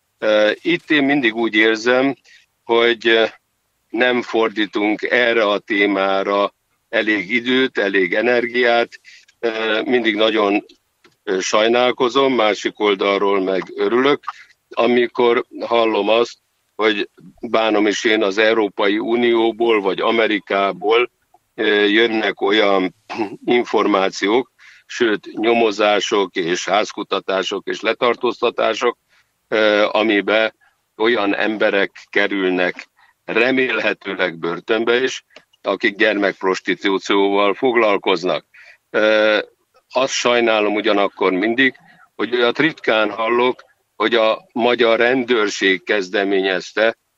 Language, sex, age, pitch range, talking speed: Hungarian, male, 60-79, 100-120 Hz, 85 wpm